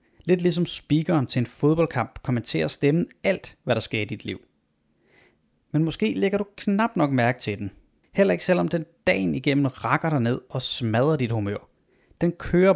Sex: male